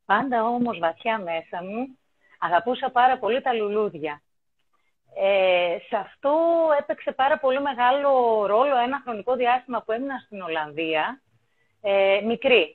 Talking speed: 120 wpm